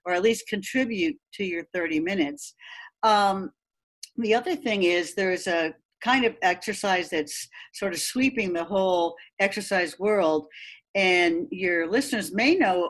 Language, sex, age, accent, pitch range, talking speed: English, female, 60-79, American, 185-245 Hz, 150 wpm